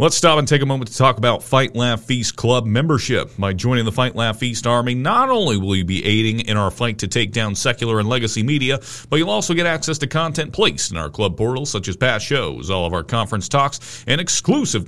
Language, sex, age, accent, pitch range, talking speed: English, male, 40-59, American, 105-135 Hz, 240 wpm